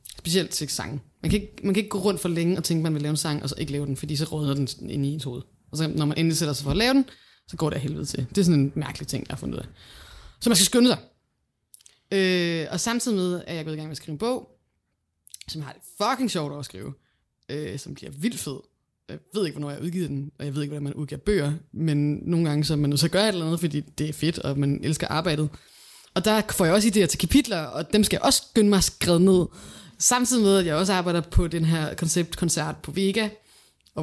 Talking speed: 275 wpm